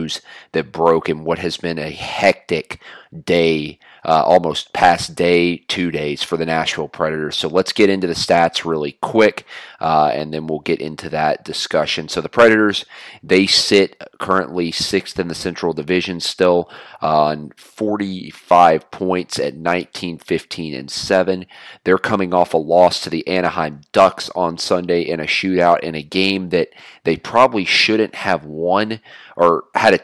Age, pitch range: 30-49, 80-95 Hz